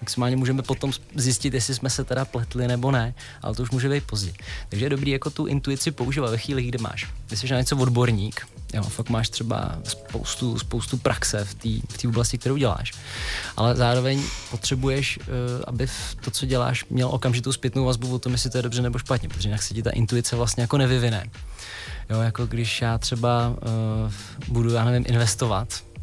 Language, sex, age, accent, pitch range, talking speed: Czech, male, 20-39, native, 110-125 Hz, 195 wpm